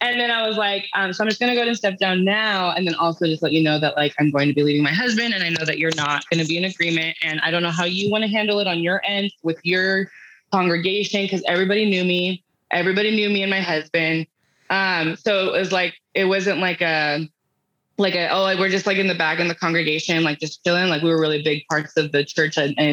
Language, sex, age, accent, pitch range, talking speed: English, female, 20-39, American, 160-195 Hz, 275 wpm